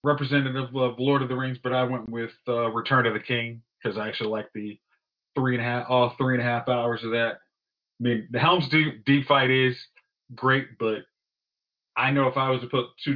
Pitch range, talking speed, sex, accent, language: 115-135 Hz, 235 wpm, male, American, English